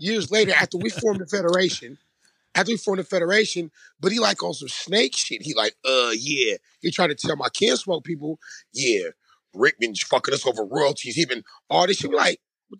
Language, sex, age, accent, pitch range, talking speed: English, male, 30-49, American, 155-215 Hz, 210 wpm